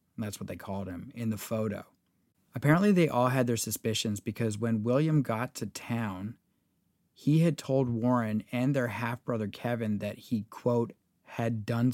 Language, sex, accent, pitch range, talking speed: English, male, American, 105-125 Hz, 165 wpm